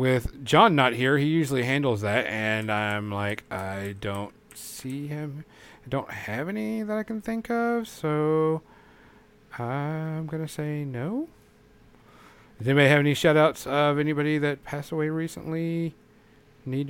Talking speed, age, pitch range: 150 wpm, 40-59, 125-160 Hz